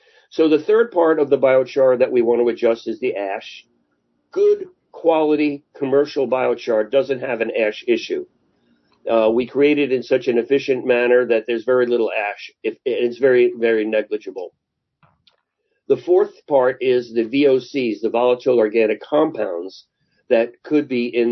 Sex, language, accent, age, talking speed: male, English, American, 50-69, 160 wpm